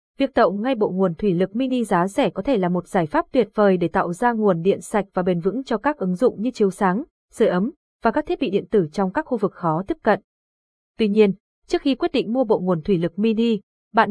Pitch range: 185-240 Hz